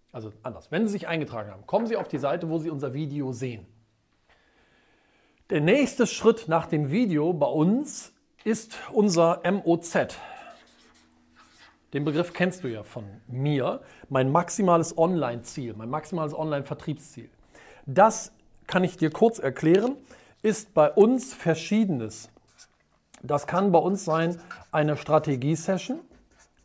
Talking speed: 130 wpm